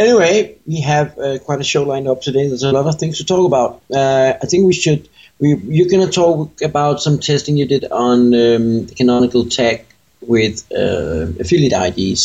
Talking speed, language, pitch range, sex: 200 wpm, English, 115-145 Hz, male